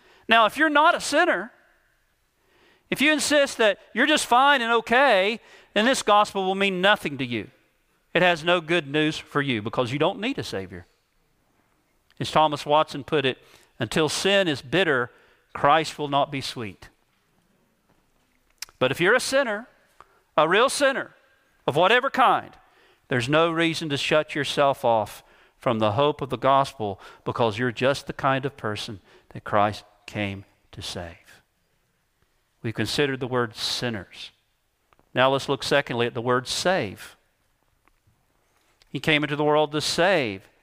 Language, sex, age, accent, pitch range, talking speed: English, male, 40-59, American, 130-195 Hz, 155 wpm